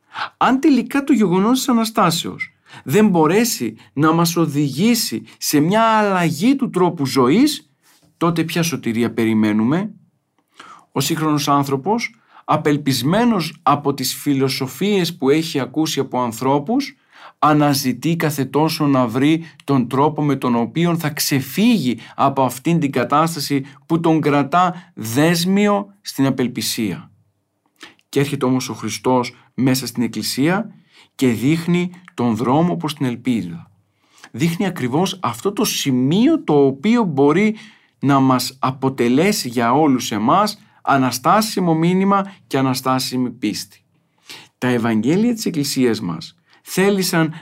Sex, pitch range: male, 130-180 Hz